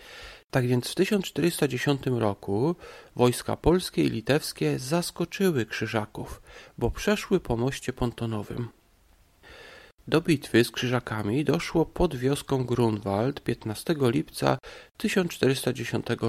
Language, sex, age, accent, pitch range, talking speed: Polish, male, 40-59, native, 115-155 Hz, 100 wpm